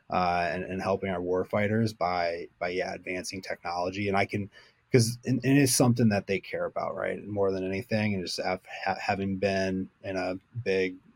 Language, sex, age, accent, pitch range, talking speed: English, male, 20-39, American, 95-105 Hz, 200 wpm